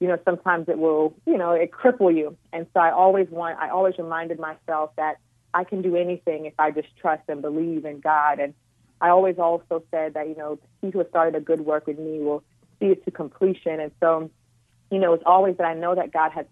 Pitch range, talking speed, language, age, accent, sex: 150-170 Hz, 240 wpm, English, 30-49, American, female